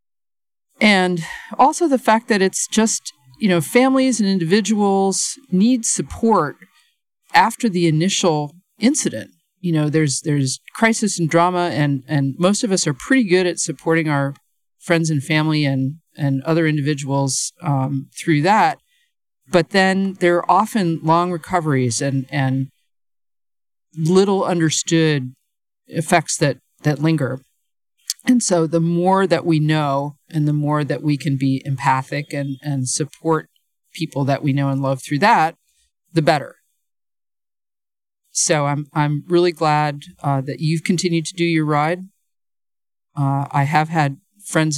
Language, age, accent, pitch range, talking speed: English, 50-69, American, 145-180 Hz, 145 wpm